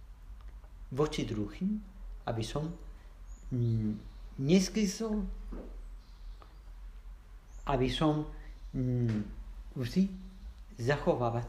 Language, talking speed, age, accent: Czech, 55 wpm, 50-69, Spanish